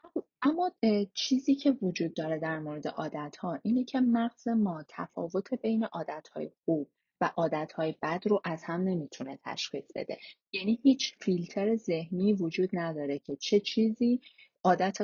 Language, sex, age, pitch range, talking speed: Persian, female, 30-49, 160-215 Hz, 150 wpm